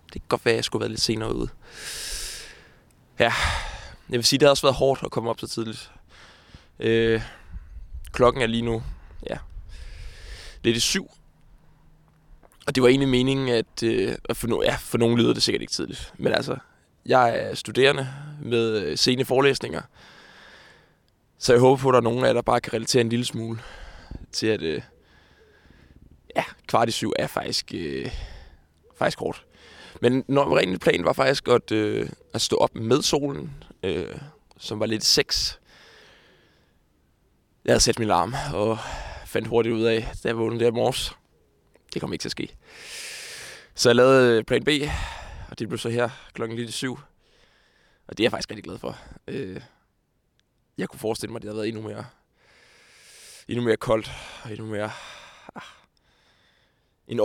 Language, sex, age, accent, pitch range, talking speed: Danish, male, 20-39, native, 105-130 Hz, 175 wpm